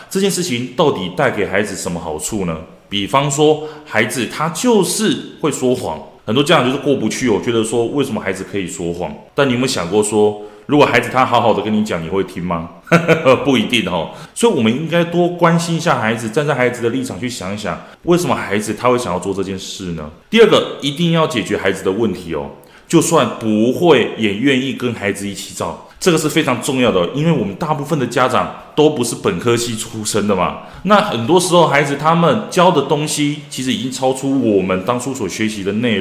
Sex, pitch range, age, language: male, 105-160 Hz, 20-39, Chinese